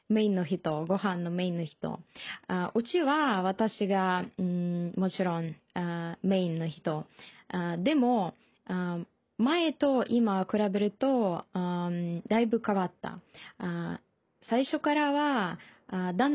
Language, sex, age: Japanese, female, 20-39